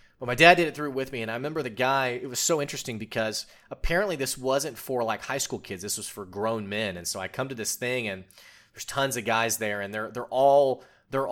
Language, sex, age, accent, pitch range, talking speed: English, male, 30-49, American, 100-135 Hz, 260 wpm